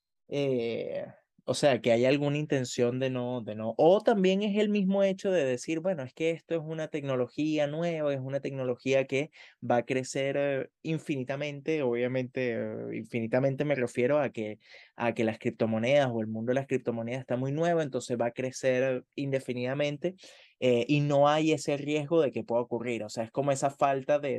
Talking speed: 185 wpm